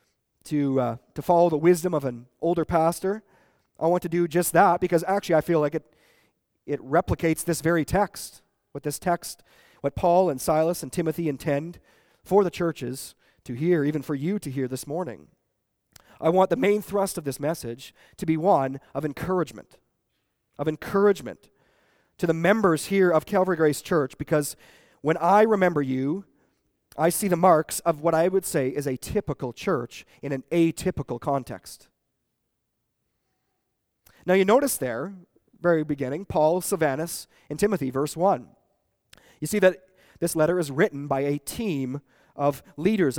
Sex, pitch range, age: male, 145-185 Hz, 40-59